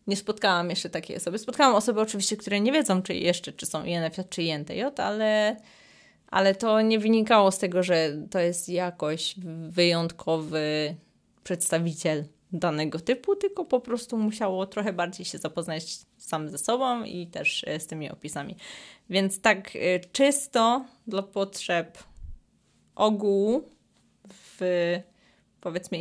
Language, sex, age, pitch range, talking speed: Polish, female, 20-39, 180-220 Hz, 130 wpm